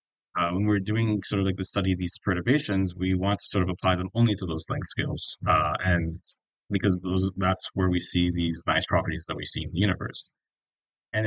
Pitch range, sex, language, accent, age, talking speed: 90-105 Hz, male, English, American, 20-39, 225 wpm